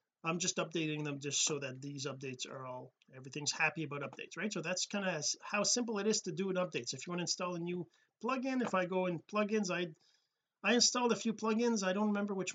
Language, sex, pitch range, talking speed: English, male, 155-210 Hz, 250 wpm